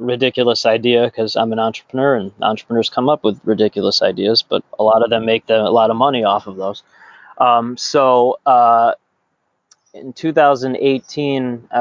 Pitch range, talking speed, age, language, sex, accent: 115-140 Hz, 160 wpm, 20-39, English, male, American